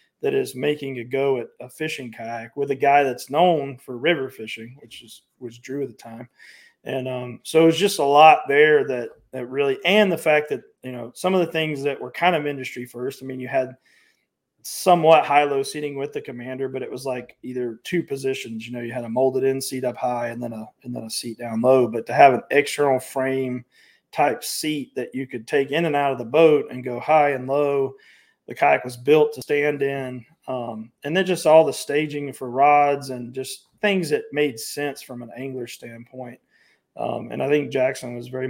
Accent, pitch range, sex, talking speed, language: American, 120-145 Hz, male, 225 wpm, English